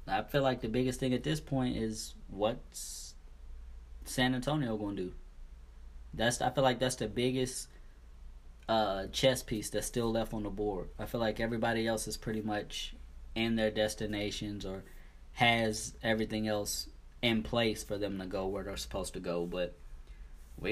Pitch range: 75-125 Hz